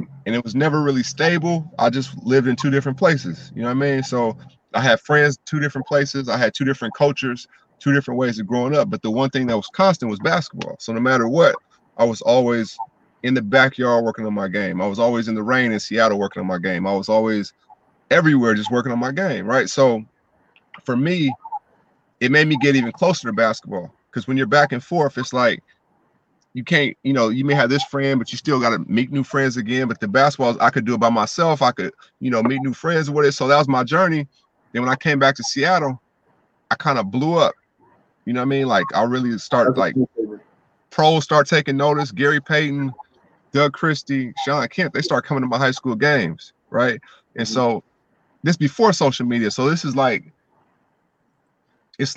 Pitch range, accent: 120-145 Hz, American